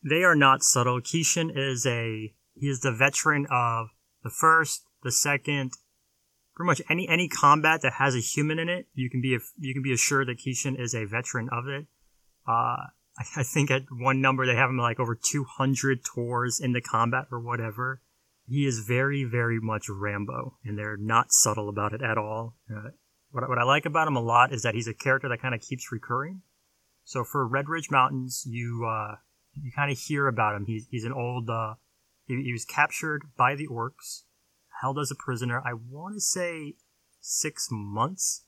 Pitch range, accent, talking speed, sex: 115-140 Hz, American, 200 wpm, male